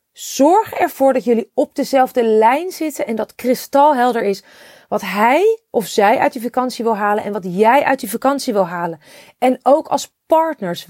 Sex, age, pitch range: female, 30-49, 215-290 Hz